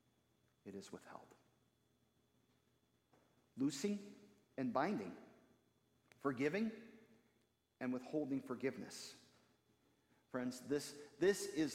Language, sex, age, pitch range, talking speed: English, male, 50-69, 130-190 Hz, 70 wpm